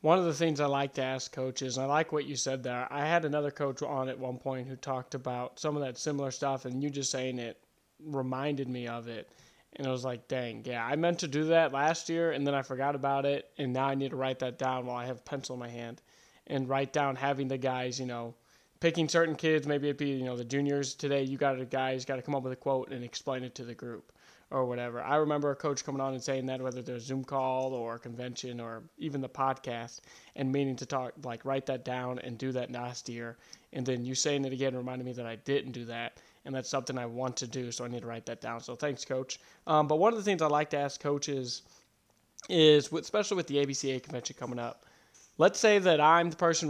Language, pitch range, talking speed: English, 125-145 Hz, 265 wpm